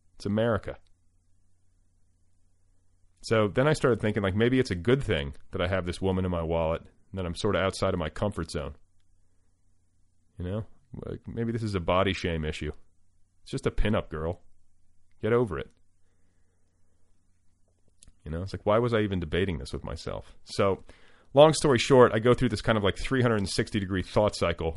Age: 30-49